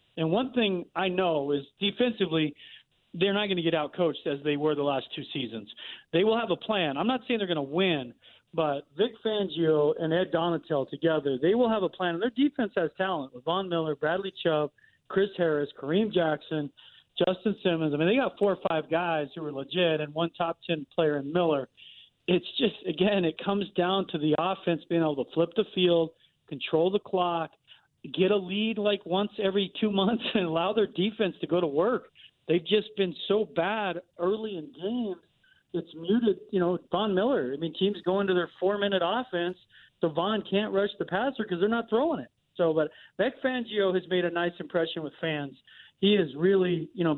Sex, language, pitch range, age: male, English, 160-195 Hz, 40-59